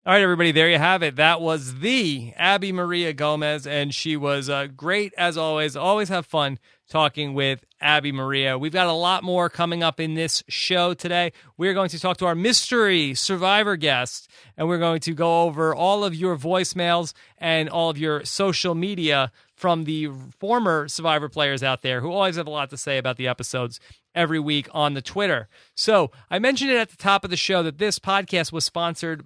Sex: male